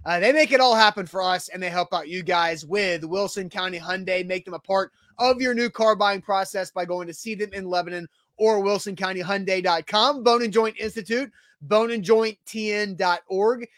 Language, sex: English, male